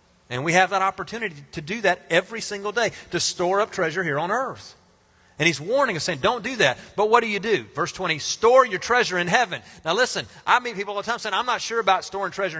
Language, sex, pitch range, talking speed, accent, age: English, male, 170-230 Hz, 255 wpm, American, 40-59